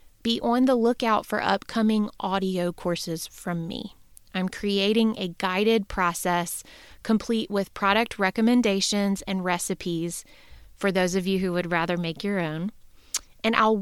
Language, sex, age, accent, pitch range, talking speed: English, female, 20-39, American, 180-220 Hz, 145 wpm